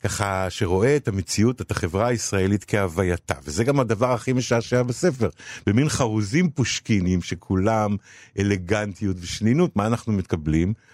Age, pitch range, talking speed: 50-69, 95-125 Hz, 125 wpm